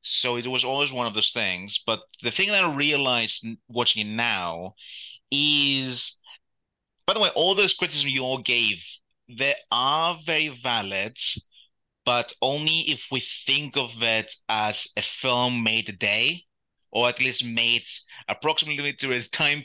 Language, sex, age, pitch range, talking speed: English, male, 30-49, 110-130 Hz, 155 wpm